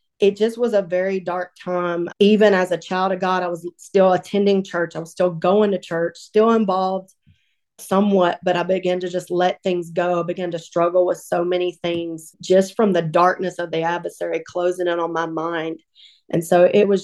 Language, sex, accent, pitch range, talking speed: English, female, American, 175-195 Hz, 210 wpm